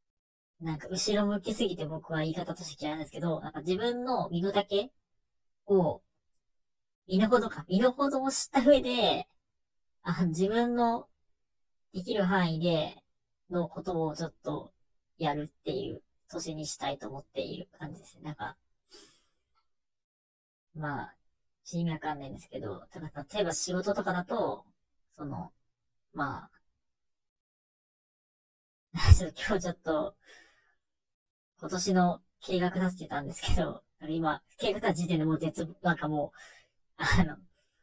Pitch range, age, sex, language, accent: 155-190 Hz, 40-59, male, Japanese, native